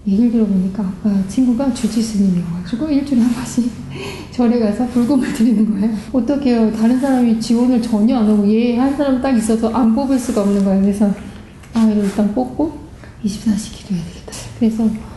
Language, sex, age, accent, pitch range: Korean, female, 30-49, native, 195-235 Hz